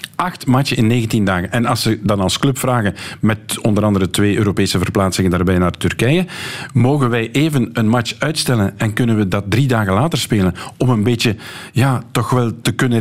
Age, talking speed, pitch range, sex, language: 50-69, 195 wpm, 105-140 Hz, male, Dutch